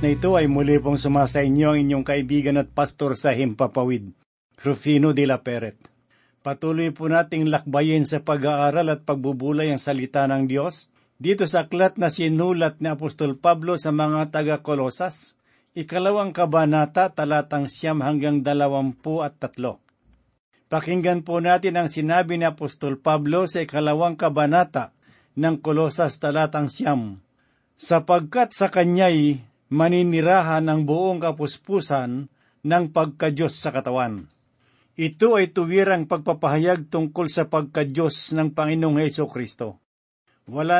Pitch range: 140-170 Hz